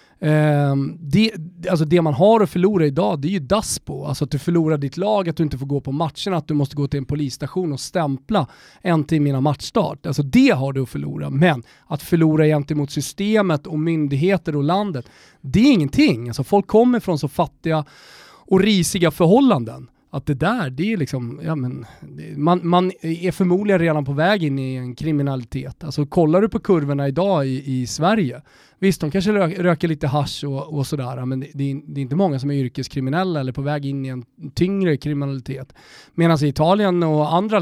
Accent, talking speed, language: native, 195 wpm, Swedish